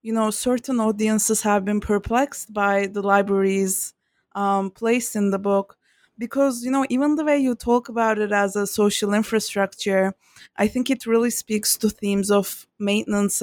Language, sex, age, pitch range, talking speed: English, female, 20-39, 195-235 Hz, 170 wpm